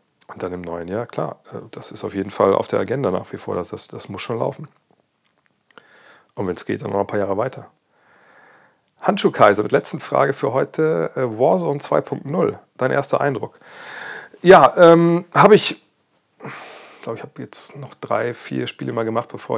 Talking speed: 180 wpm